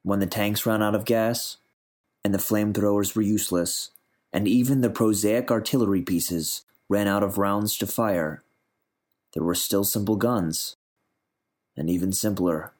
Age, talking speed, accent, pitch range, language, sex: 30-49, 150 wpm, American, 90-110 Hz, English, male